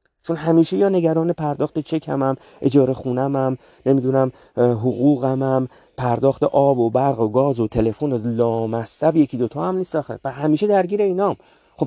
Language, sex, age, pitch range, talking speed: Persian, male, 40-59, 135-170 Hz, 155 wpm